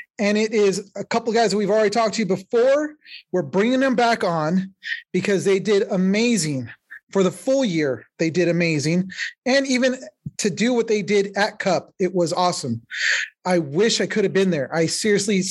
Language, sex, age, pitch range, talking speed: English, male, 30-49, 170-220 Hz, 195 wpm